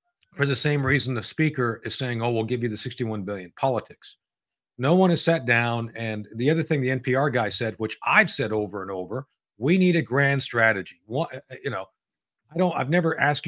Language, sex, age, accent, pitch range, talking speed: English, male, 40-59, American, 110-140 Hz, 215 wpm